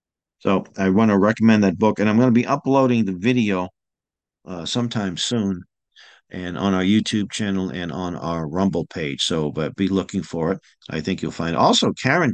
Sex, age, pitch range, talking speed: male, 50-69, 90-115 Hz, 195 wpm